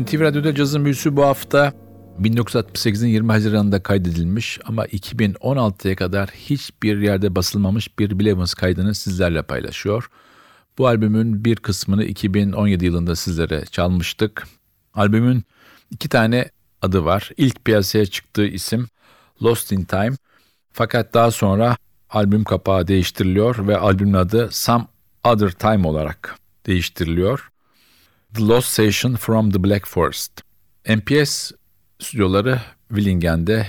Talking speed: 115 wpm